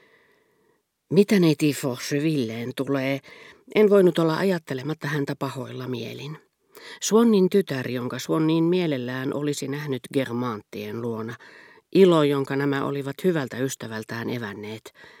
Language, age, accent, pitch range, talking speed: Finnish, 40-59, native, 120-160 Hz, 110 wpm